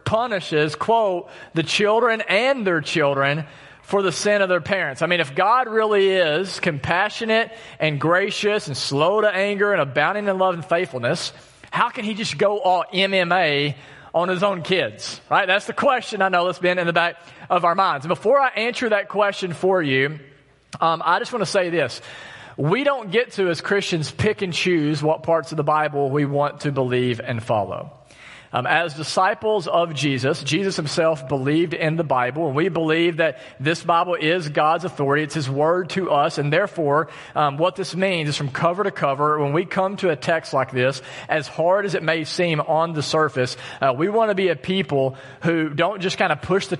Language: English